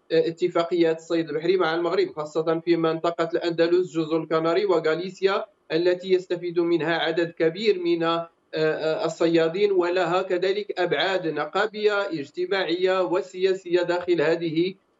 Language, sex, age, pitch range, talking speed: English, male, 40-59, 165-190 Hz, 110 wpm